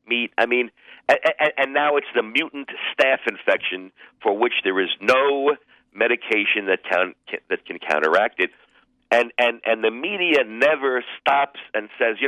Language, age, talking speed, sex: English, 50-69, 145 wpm, male